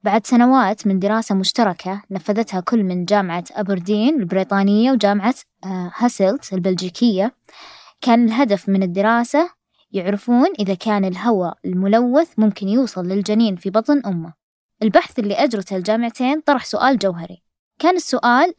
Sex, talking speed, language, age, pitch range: female, 125 wpm, Arabic, 20-39, 190-240 Hz